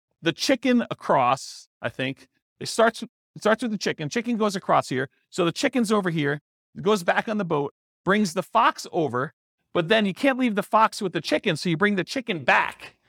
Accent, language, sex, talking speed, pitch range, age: American, English, male, 215 wpm, 145-210 Hz, 40-59